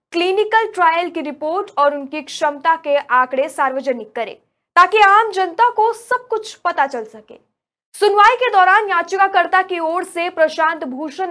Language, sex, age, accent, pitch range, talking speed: Hindi, female, 20-39, native, 290-395 Hz, 155 wpm